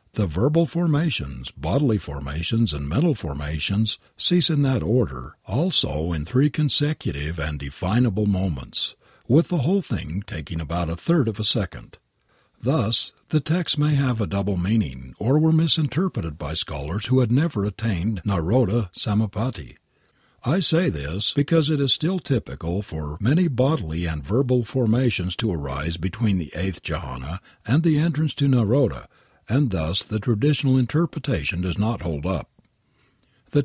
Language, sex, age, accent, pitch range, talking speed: English, male, 60-79, American, 85-140 Hz, 150 wpm